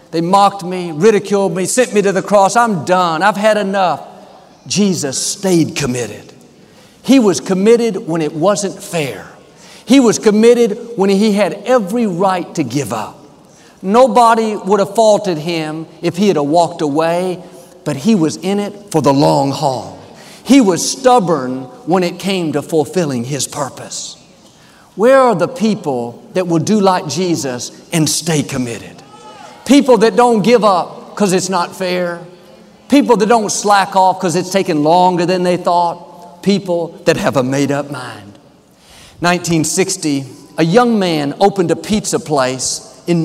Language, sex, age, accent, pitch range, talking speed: English, male, 50-69, American, 155-205 Hz, 155 wpm